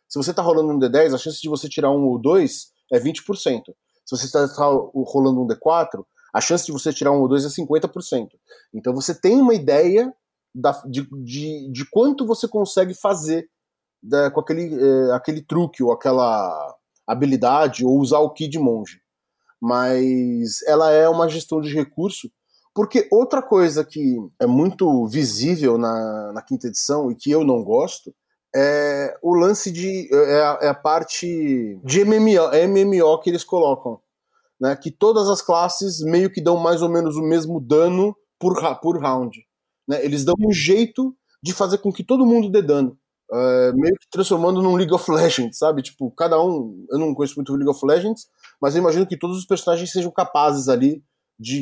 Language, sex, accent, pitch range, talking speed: Portuguese, male, Brazilian, 140-185 Hz, 185 wpm